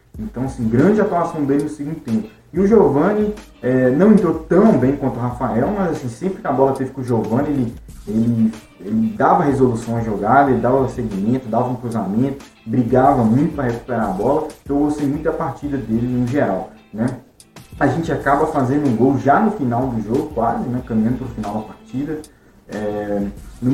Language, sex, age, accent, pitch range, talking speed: Portuguese, male, 20-39, Brazilian, 115-150 Hz, 200 wpm